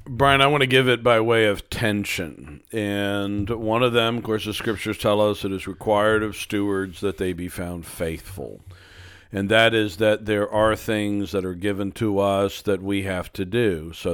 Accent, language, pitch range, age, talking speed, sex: American, English, 95-105 Hz, 50-69, 205 wpm, male